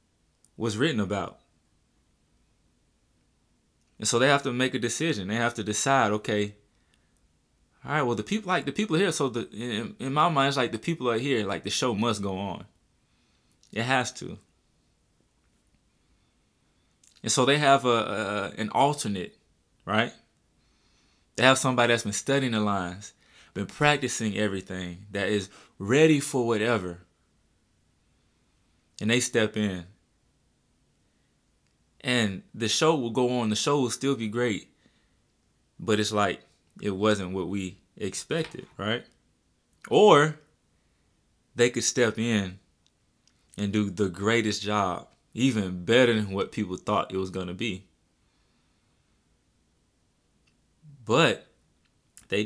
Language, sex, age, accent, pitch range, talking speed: English, male, 20-39, American, 95-120 Hz, 135 wpm